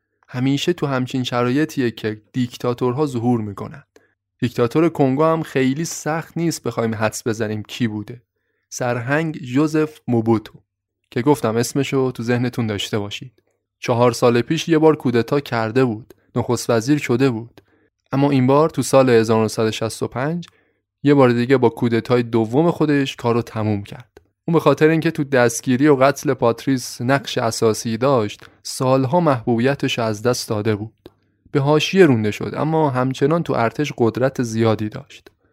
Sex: male